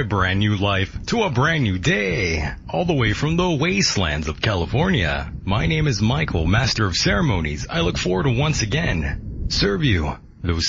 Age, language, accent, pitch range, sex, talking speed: 40-59, English, American, 90-140 Hz, male, 185 wpm